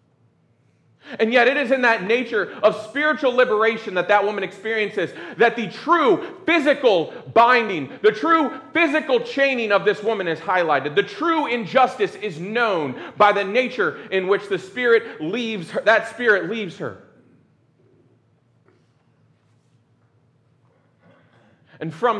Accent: American